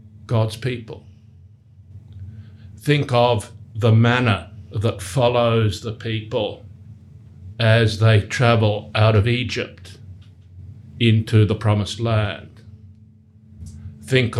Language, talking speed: English, 90 wpm